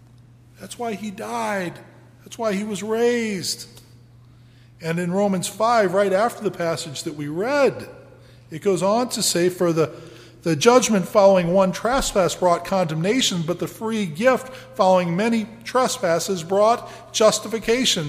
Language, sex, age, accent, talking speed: English, male, 40-59, American, 145 wpm